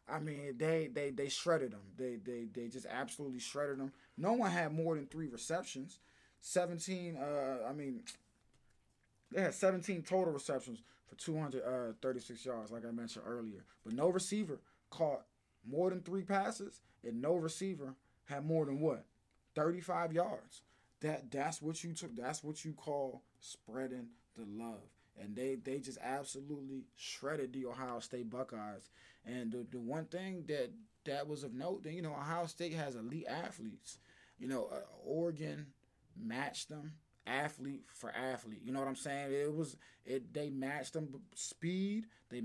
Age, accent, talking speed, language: 20-39, American, 170 wpm, English